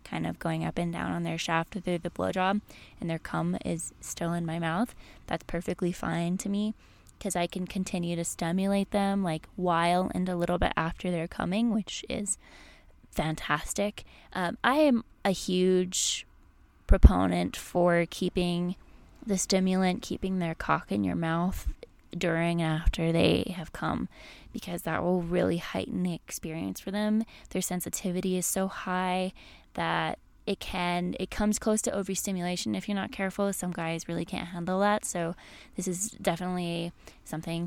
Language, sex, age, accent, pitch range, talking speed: English, female, 20-39, American, 170-195 Hz, 165 wpm